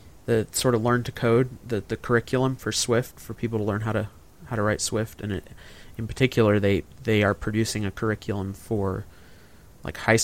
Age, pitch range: 20-39, 95-115 Hz